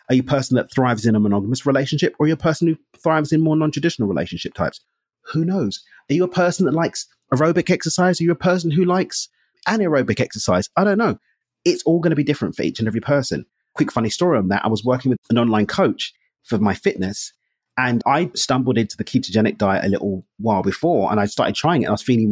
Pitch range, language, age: 115-165 Hz, English, 30-49